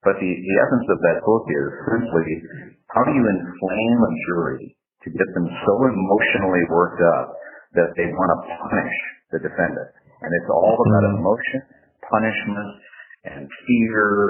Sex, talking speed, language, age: male, 155 wpm, English, 50-69